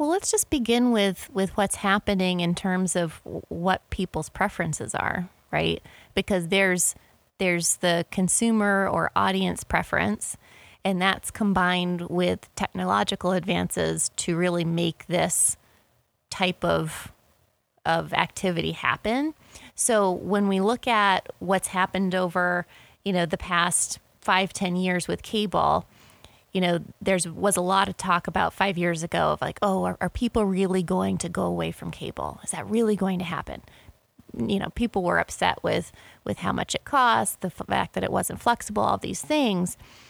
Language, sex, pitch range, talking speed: English, female, 175-200 Hz, 160 wpm